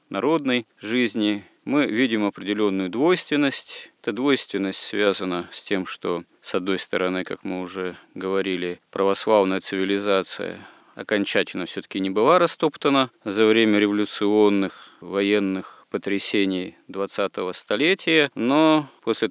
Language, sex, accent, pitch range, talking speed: Russian, male, native, 95-110 Hz, 110 wpm